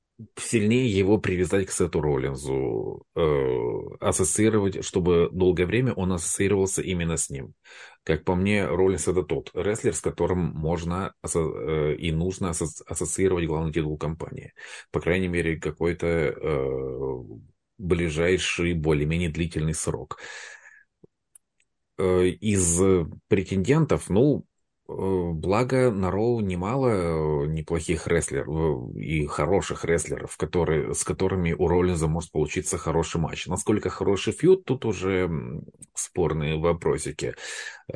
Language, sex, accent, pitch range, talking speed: Russian, male, native, 80-95 Hz, 105 wpm